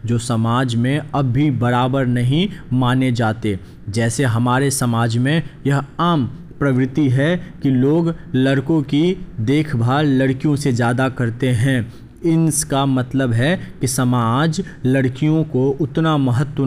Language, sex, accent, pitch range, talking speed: Hindi, male, native, 120-150 Hz, 135 wpm